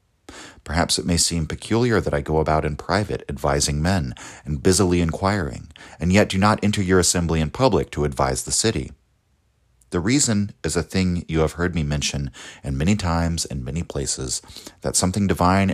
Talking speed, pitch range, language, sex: 185 wpm, 70-95 Hz, English, male